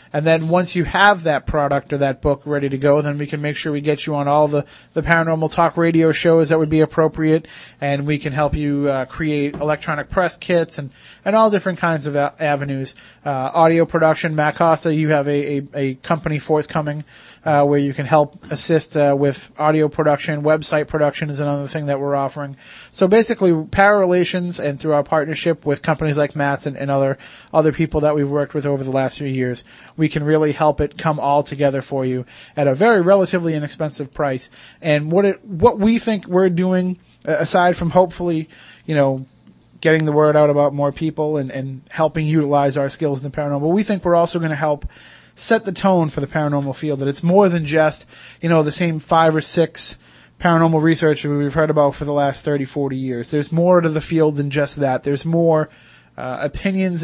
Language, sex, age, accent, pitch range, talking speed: English, male, 30-49, American, 140-165 Hz, 210 wpm